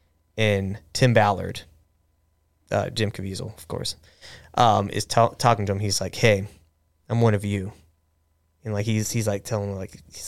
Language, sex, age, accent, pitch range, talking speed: English, male, 20-39, American, 85-110 Hz, 170 wpm